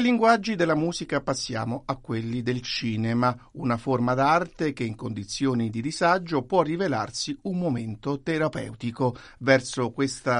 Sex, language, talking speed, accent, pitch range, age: male, Italian, 135 wpm, native, 120-145 Hz, 50-69